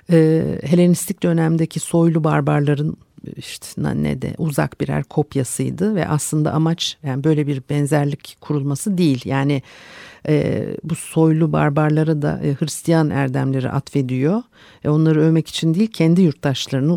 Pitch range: 135-175 Hz